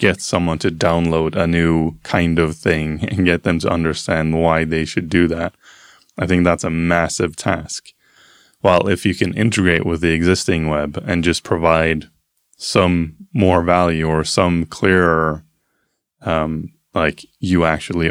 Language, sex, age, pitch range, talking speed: English, male, 20-39, 80-95 Hz, 155 wpm